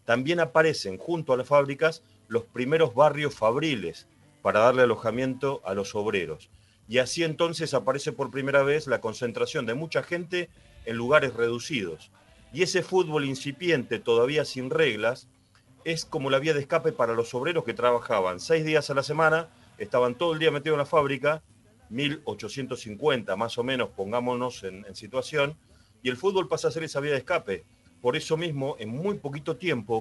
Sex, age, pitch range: male, 40-59, 115-160 Hz